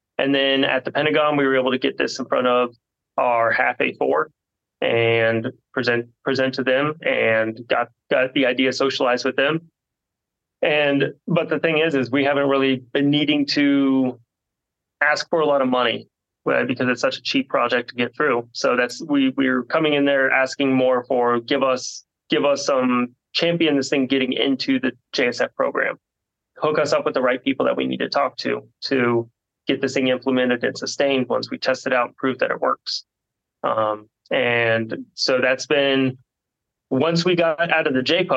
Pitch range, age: 125-150 Hz, 20-39